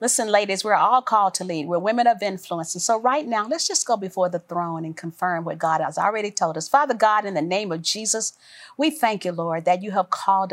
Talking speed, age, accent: 250 wpm, 40-59, American